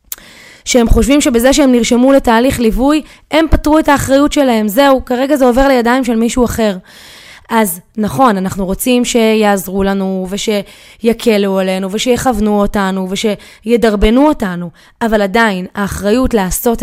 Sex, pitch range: female, 205-265 Hz